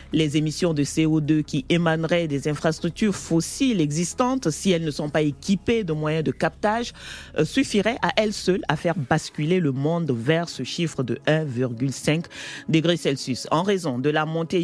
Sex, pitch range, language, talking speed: male, 145-185 Hz, French, 170 wpm